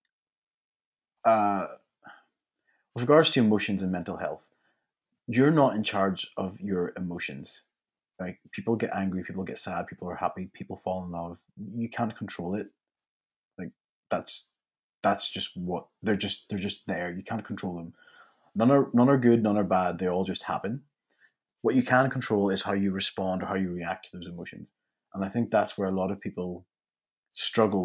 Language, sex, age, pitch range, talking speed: English, male, 30-49, 90-110 Hz, 180 wpm